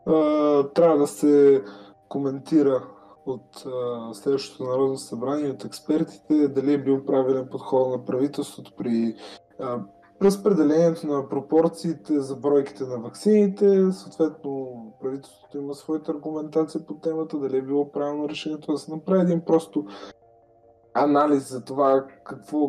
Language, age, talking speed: Bulgarian, 20-39, 120 wpm